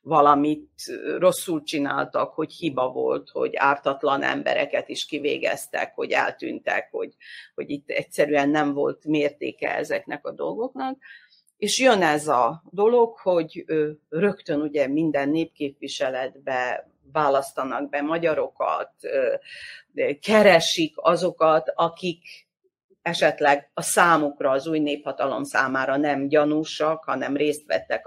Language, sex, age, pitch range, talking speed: Hungarian, female, 40-59, 145-200 Hz, 110 wpm